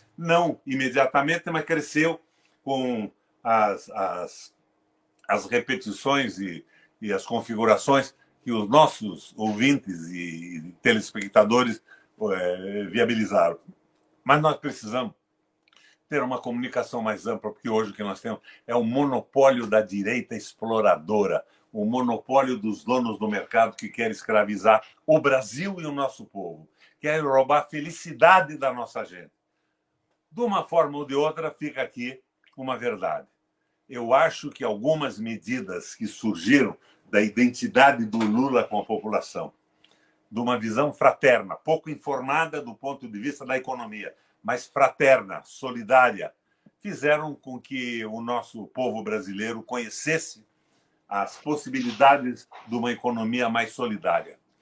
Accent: Brazilian